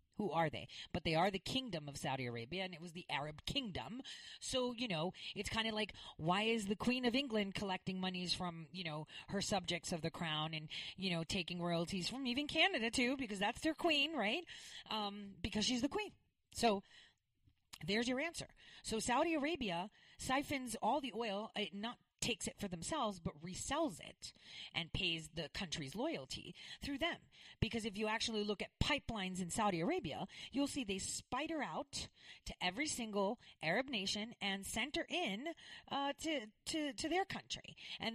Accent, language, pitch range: American, English, 170-245 Hz